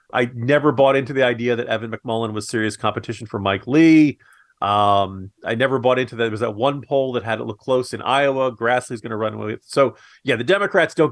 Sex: male